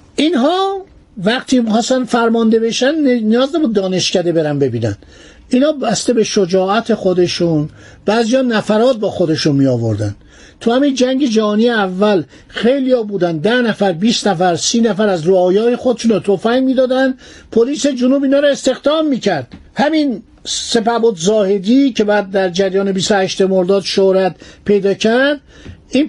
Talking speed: 140 wpm